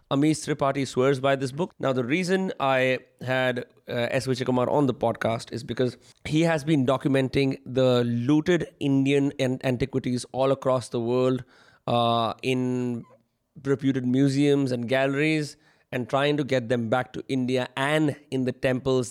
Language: Hindi